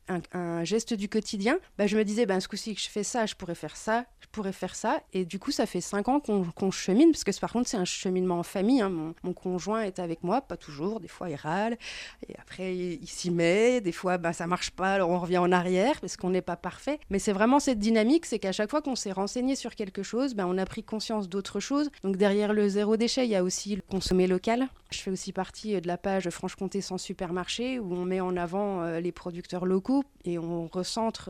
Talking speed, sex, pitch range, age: 260 wpm, female, 180-215 Hz, 30-49